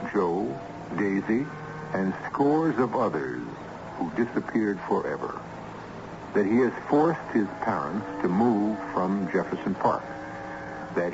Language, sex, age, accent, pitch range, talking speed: English, male, 60-79, American, 100-155 Hz, 115 wpm